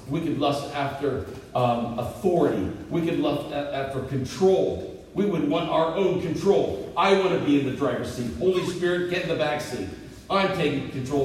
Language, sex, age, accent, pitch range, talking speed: English, male, 50-69, American, 135-180 Hz, 185 wpm